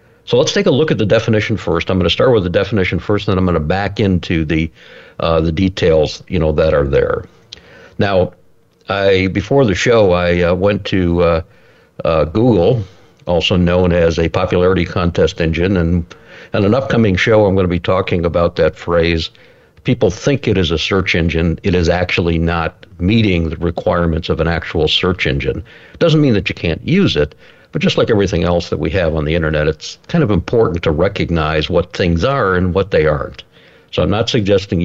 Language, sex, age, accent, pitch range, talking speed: English, male, 60-79, American, 85-100 Hz, 205 wpm